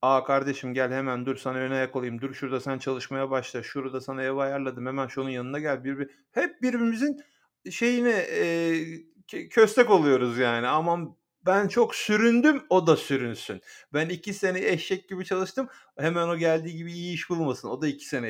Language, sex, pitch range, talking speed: Turkish, male, 130-185 Hz, 175 wpm